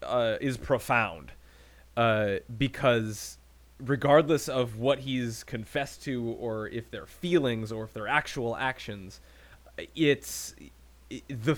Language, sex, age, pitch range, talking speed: English, male, 20-39, 105-145 Hz, 115 wpm